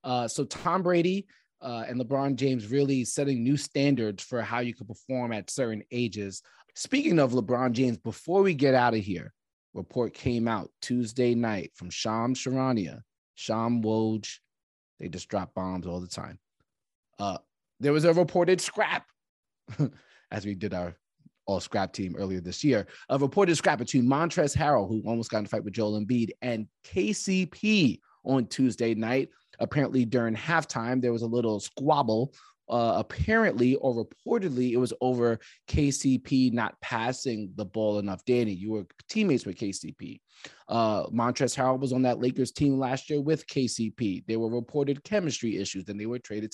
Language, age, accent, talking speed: English, 30-49, American, 170 wpm